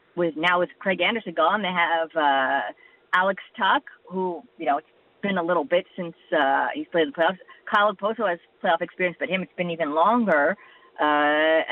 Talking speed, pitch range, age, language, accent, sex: 195 wpm, 175-225 Hz, 30-49, English, American, female